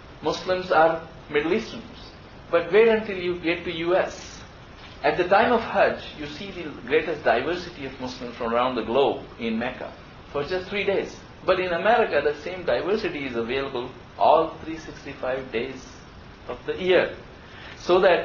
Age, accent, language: 50-69, Indian, English